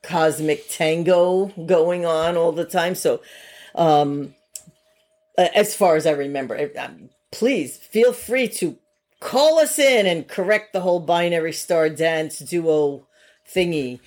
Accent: American